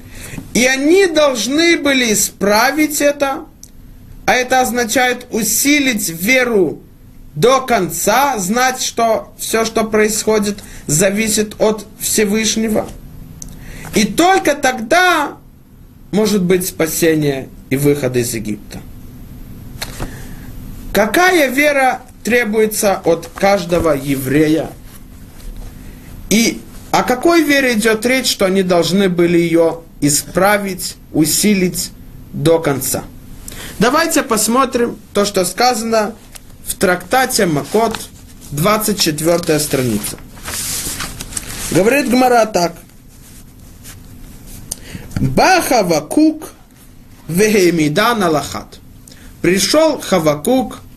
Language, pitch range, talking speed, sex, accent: Russian, 175-255 Hz, 80 wpm, male, native